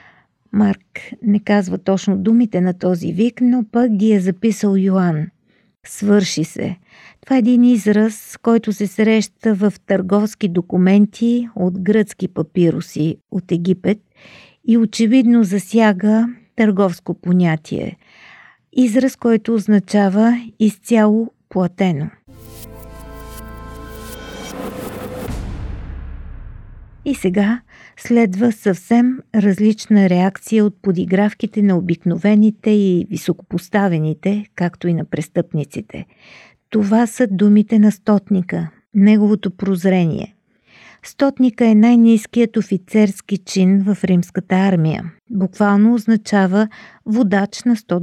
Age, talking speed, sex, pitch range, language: 50-69, 95 wpm, female, 180-220 Hz, Bulgarian